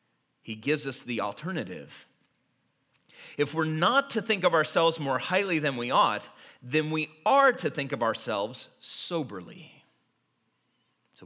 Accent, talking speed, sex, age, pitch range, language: American, 140 wpm, male, 40-59, 140-205 Hz, English